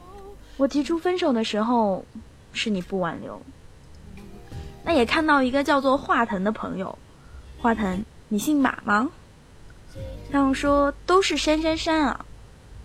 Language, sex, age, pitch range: Chinese, female, 20-39, 215-290 Hz